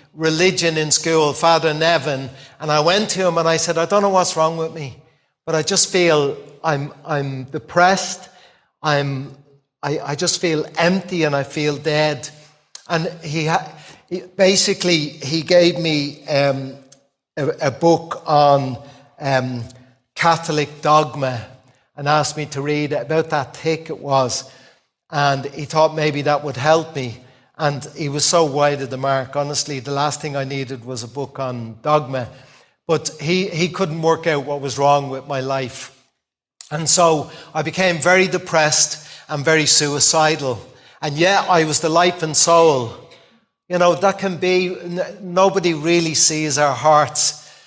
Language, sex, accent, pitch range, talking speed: English, male, British, 140-165 Hz, 160 wpm